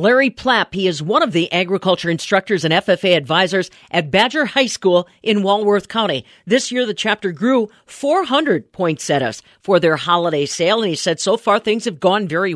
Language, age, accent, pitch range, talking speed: English, 40-59, American, 175-225 Hz, 185 wpm